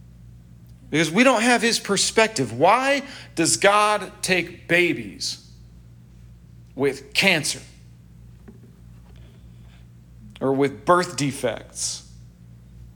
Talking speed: 80 wpm